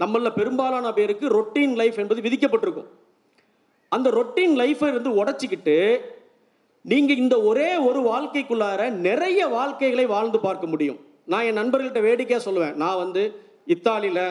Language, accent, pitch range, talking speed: Tamil, native, 205-290 Hz, 125 wpm